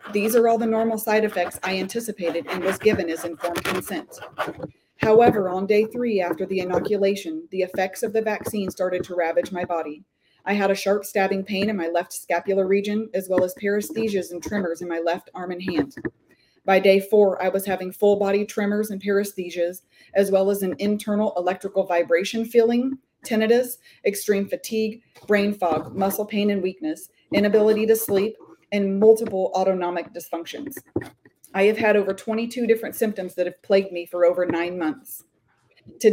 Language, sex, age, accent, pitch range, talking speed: English, female, 30-49, American, 180-215 Hz, 175 wpm